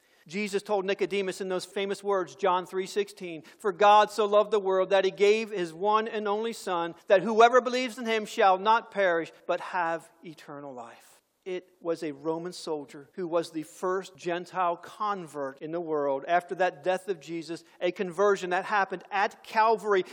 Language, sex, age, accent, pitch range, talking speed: English, male, 50-69, American, 180-240 Hz, 180 wpm